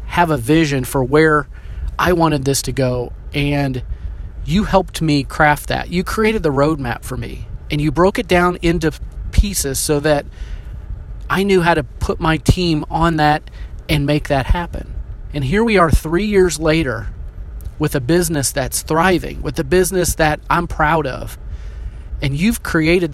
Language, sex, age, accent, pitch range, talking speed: English, male, 30-49, American, 115-170 Hz, 170 wpm